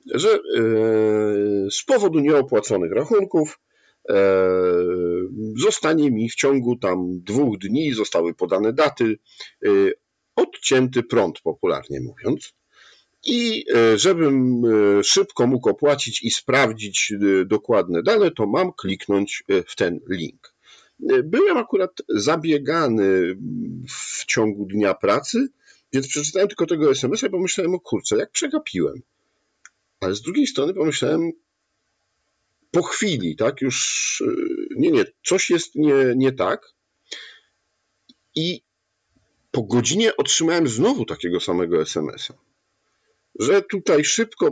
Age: 50-69